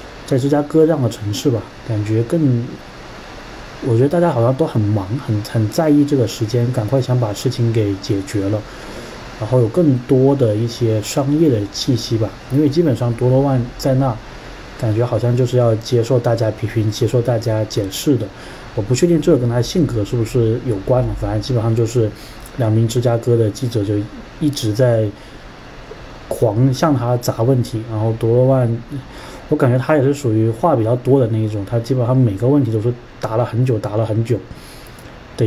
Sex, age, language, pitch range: male, 20-39, Chinese, 110-130 Hz